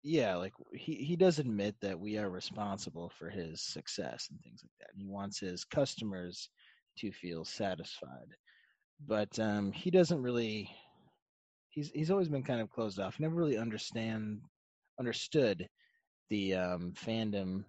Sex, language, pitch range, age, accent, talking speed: male, English, 100-130 Hz, 20-39, American, 150 wpm